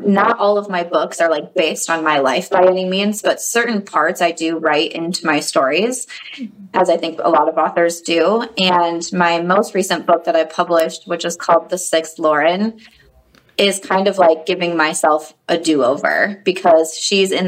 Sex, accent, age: female, American, 20-39